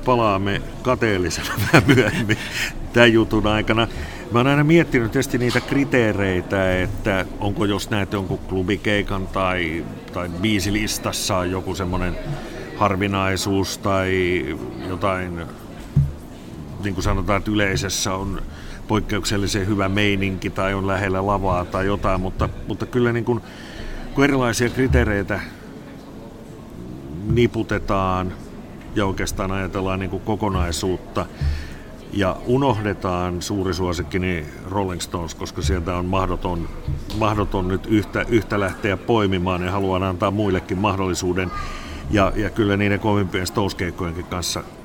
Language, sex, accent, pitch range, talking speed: Finnish, male, native, 90-105 Hz, 115 wpm